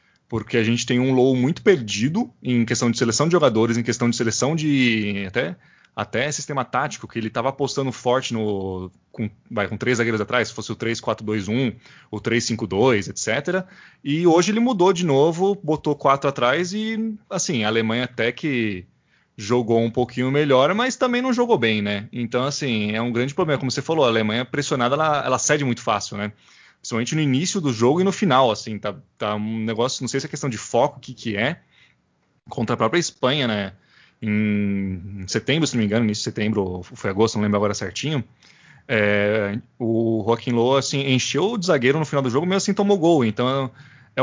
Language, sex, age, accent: Portuguese, male, 20-39, Brazilian